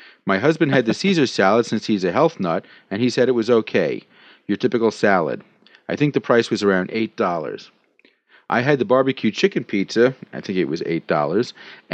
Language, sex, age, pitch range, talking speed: English, male, 40-59, 110-140 Hz, 190 wpm